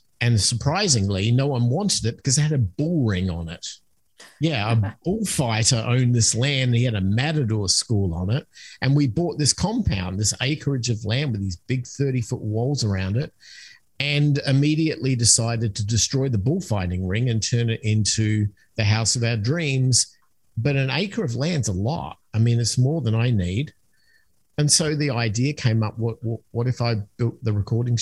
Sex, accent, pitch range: male, Australian, 110-150 Hz